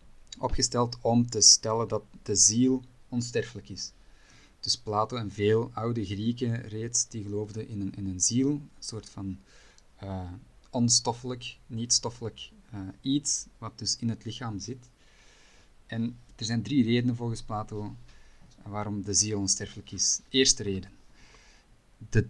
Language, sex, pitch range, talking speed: Dutch, male, 100-120 Hz, 135 wpm